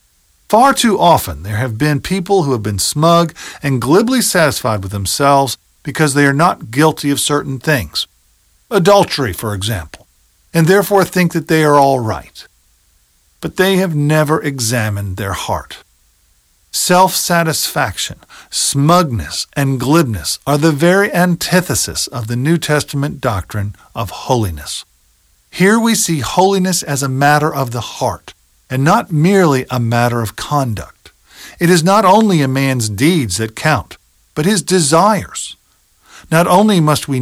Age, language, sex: 50-69, English, male